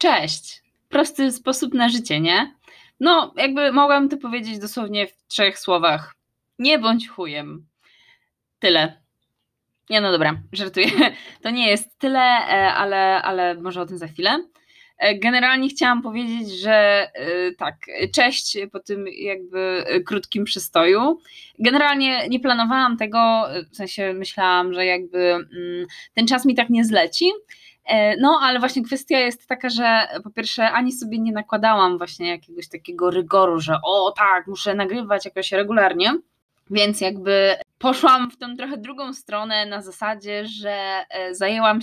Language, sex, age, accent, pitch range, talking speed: Polish, female, 20-39, native, 185-250 Hz, 140 wpm